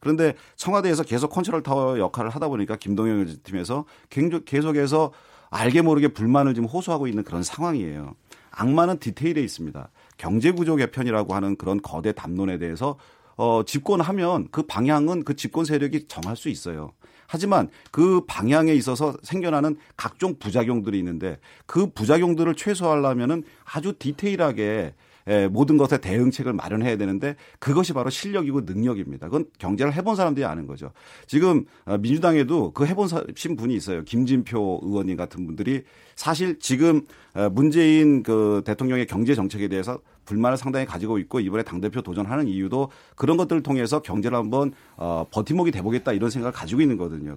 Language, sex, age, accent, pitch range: Korean, male, 40-59, native, 105-155 Hz